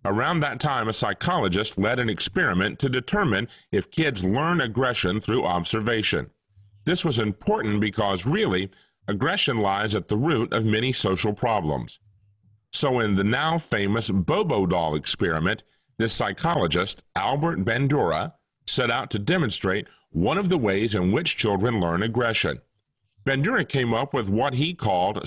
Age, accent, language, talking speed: 40-59, American, English, 145 wpm